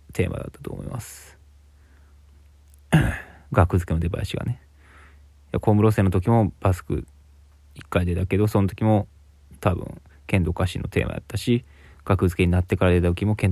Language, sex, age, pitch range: Japanese, male, 20-39, 75-95 Hz